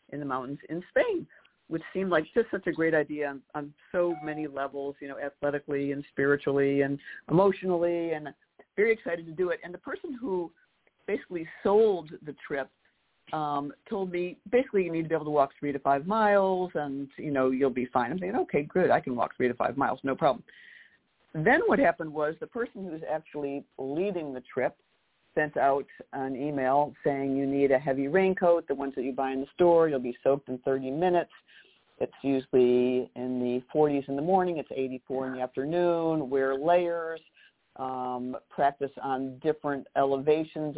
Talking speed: 190 wpm